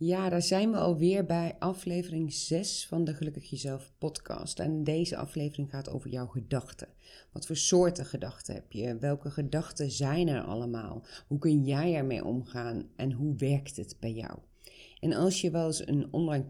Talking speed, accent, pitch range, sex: 180 wpm, Dutch, 140-170 Hz, female